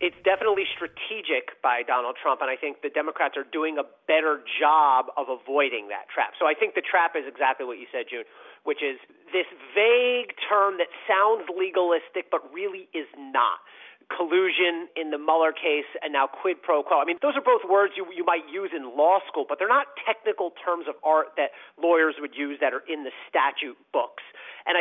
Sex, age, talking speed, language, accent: male, 40-59, 205 wpm, English, American